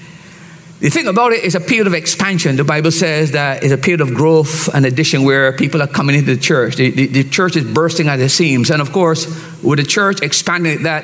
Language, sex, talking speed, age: English, male, 245 wpm, 50-69